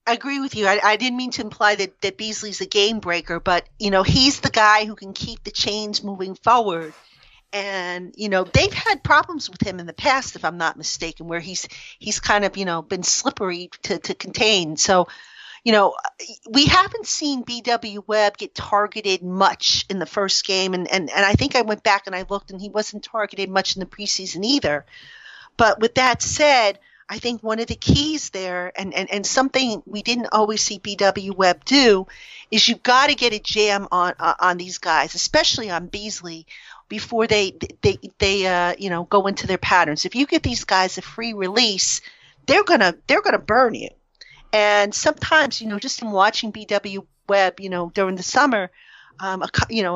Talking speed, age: 205 wpm, 40-59